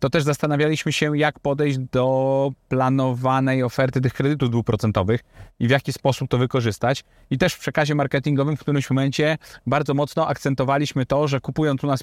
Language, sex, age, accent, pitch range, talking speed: Polish, male, 30-49, native, 125-150 Hz, 170 wpm